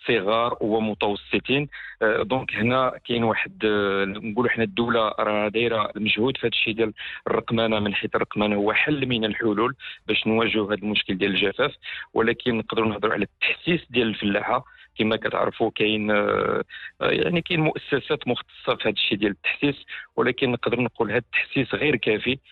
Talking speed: 135 wpm